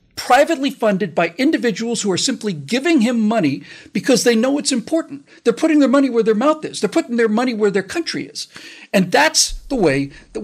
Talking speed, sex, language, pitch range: 205 wpm, male, English, 160-220 Hz